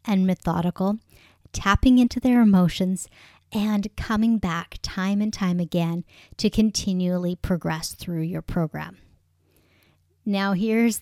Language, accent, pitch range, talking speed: English, American, 170-215 Hz, 115 wpm